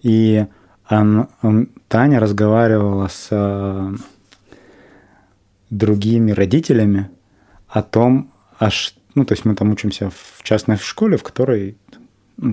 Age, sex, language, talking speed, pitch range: 20-39, male, Russian, 105 wpm, 100-115 Hz